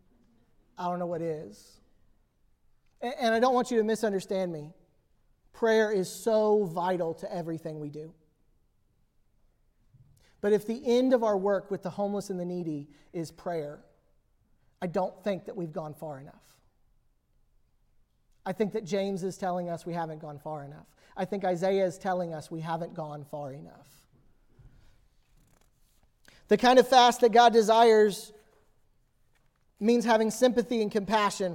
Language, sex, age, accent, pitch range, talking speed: English, male, 40-59, American, 165-220 Hz, 150 wpm